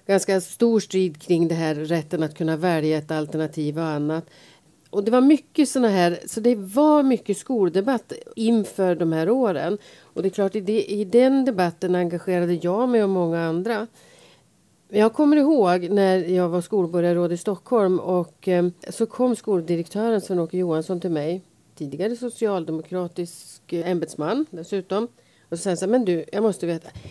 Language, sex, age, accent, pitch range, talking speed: Swedish, female, 40-59, native, 165-210 Hz, 170 wpm